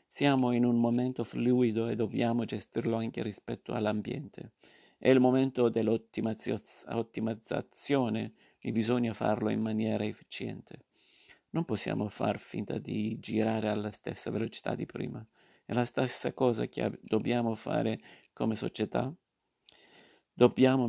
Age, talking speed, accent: 50-69, 125 wpm, native